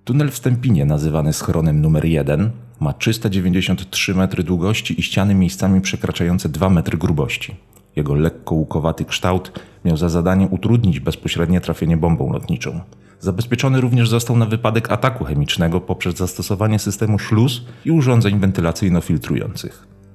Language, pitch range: Polish, 85-105 Hz